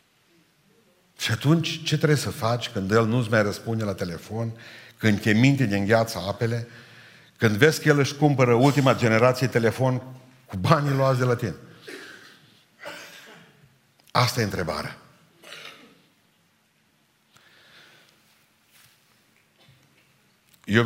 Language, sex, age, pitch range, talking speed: Romanian, male, 60-79, 110-150 Hz, 105 wpm